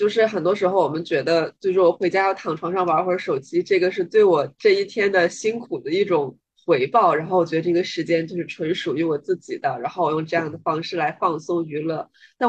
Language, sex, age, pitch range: Chinese, female, 20-39, 165-255 Hz